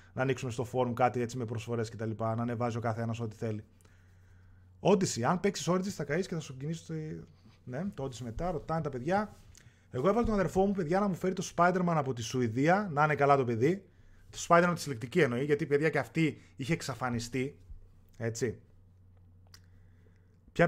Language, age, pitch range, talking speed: Greek, 30-49, 110-160 Hz, 200 wpm